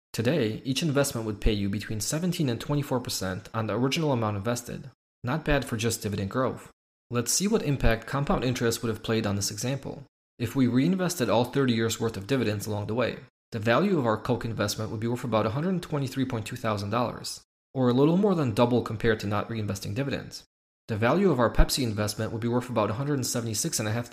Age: 20-39